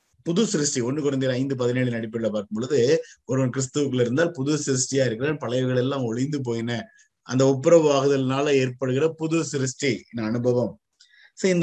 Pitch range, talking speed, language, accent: 110-150 Hz, 130 wpm, Tamil, native